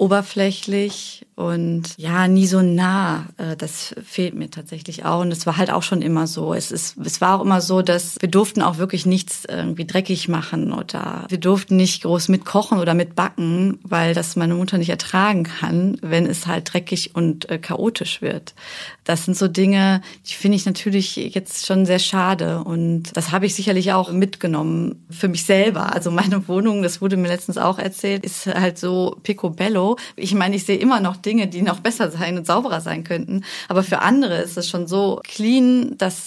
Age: 30-49